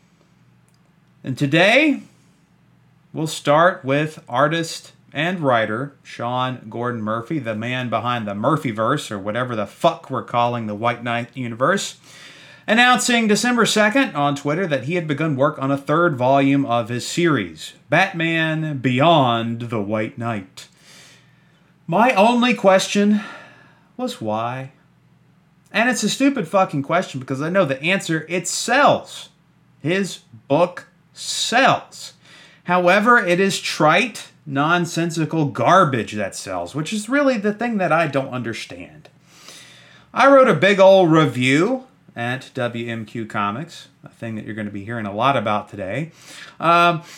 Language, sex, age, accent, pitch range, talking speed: English, male, 30-49, American, 125-190 Hz, 135 wpm